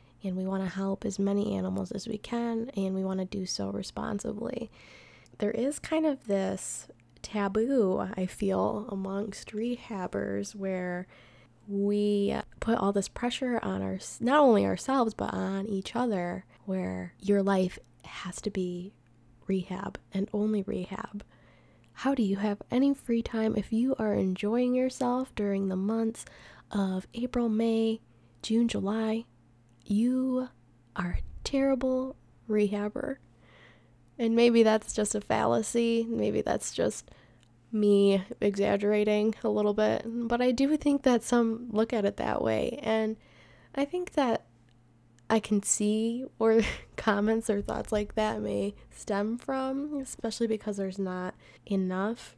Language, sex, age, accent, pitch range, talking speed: English, female, 20-39, American, 190-235 Hz, 140 wpm